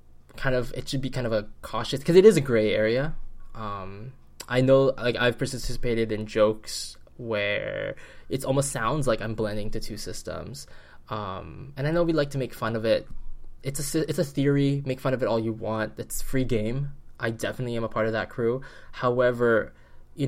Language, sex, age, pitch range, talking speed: English, male, 10-29, 110-130 Hz, 205 wpm